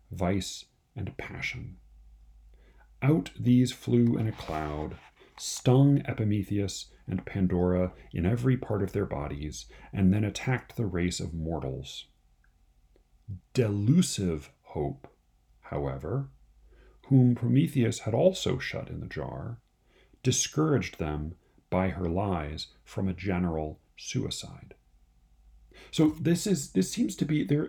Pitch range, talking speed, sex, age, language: 85-130 Hz, 115 wpm, male, 40-59, English